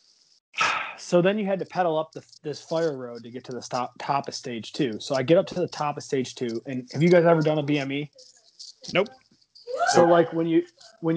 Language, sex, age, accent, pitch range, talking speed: English, male, 20-39, American, 130-175 Hz, 235 wpm